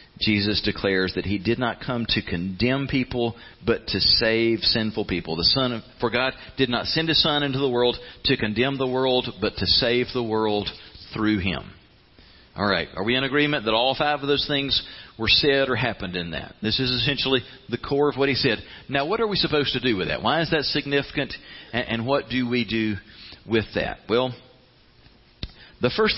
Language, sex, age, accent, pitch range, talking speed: English, male, 40-59, American, 110-135 Hz, 200 wpm